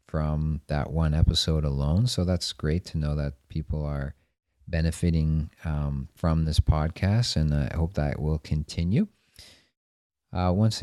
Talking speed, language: 150 wpm, English